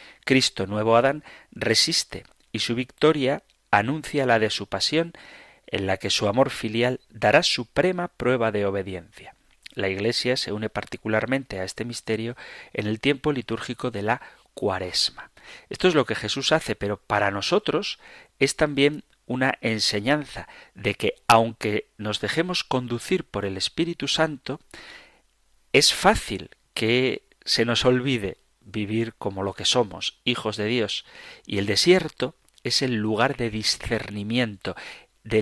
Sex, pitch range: male, 105-135 Hz